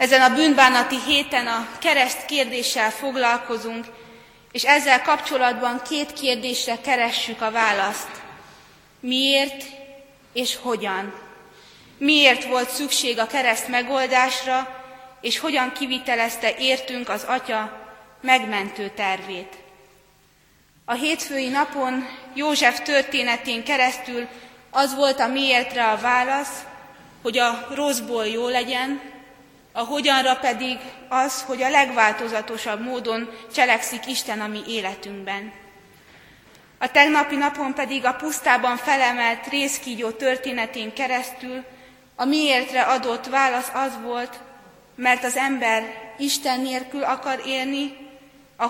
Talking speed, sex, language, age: 105 wpm, female, Hungarian, 20-39